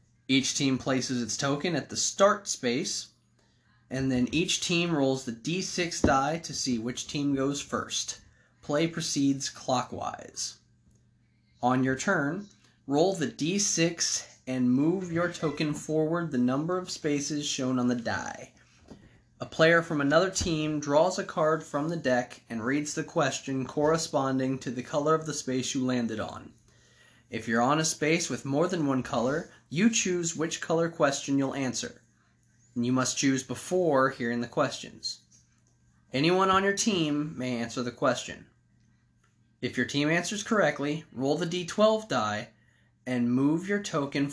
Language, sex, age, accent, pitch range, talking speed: English, male, 20-39, American, 125-165 Hz, 155 wpm